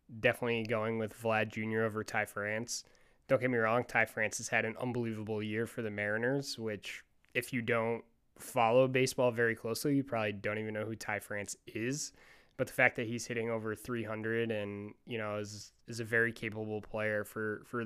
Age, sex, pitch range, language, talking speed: 20-39, male, 110-125 Hz, English, 195 wpm